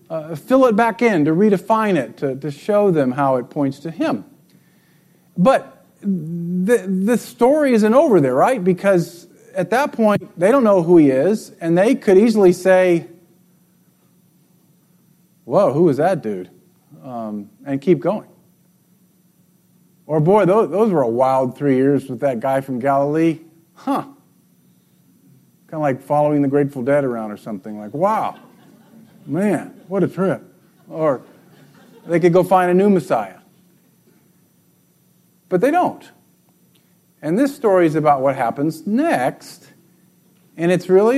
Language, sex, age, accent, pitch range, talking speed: English, male, 50-69, American, 140-185 Hz, 150 wpm